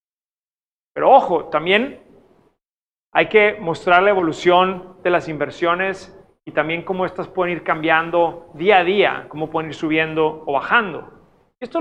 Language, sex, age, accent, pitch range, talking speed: Spanish, male, 40-59, Mexican, 165-210 Hz, 140 wpm